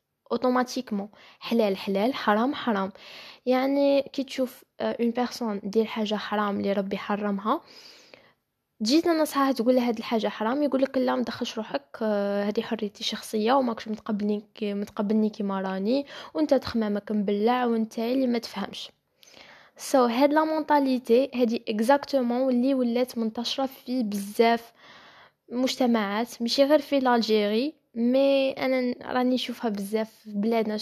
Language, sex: Arabic, female